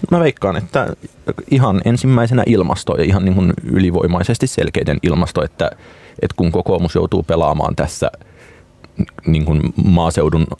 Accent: native